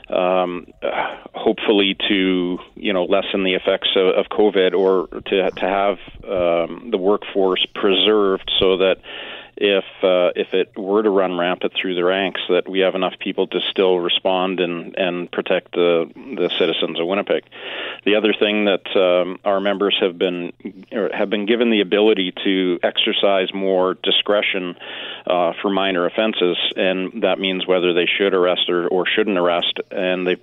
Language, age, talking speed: English, 40-59, 170 wpm